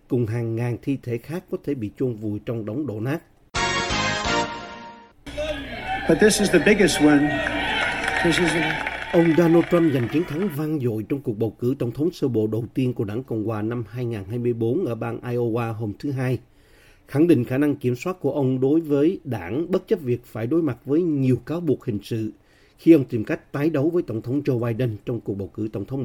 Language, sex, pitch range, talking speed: Vietnamese, male, 115-155 Hz, 195 wpm